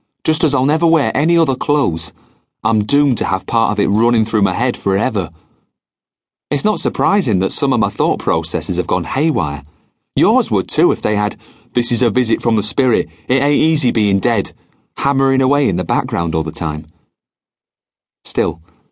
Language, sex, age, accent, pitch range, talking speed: English, male, 30-49, British, 95-140 Hz, 185 wpm